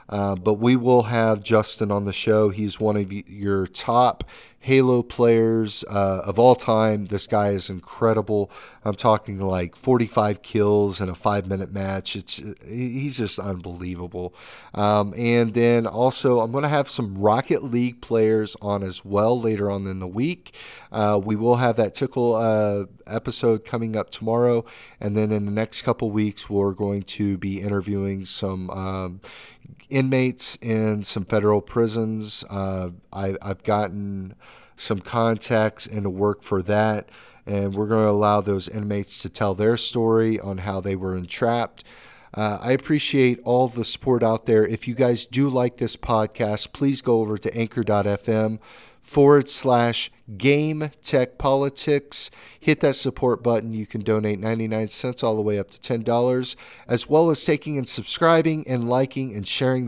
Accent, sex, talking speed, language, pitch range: American, male, 165 wpm, English, 100-120 Hz